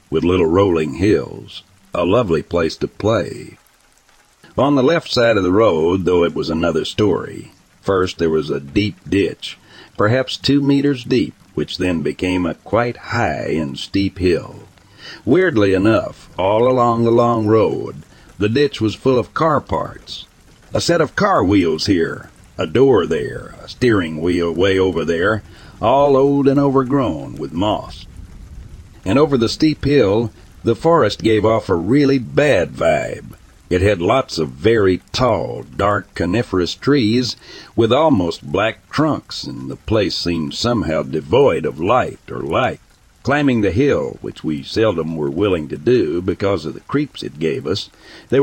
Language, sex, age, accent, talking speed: English, male, 60-79, American, 160 wpm